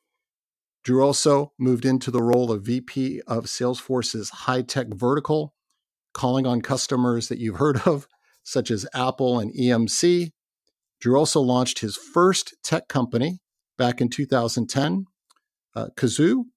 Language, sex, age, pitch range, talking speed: English, male, 50-69, 120-140 Hz, 135 wpm